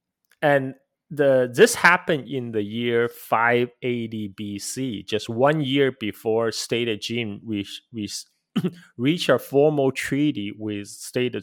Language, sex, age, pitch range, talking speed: English, male, 30-49, 105-140 Hz, 115 wpm